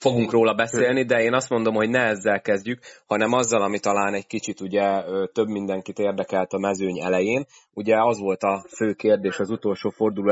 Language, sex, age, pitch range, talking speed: Hungarian, male, 30-49, 95-115 Hz, 190 wpm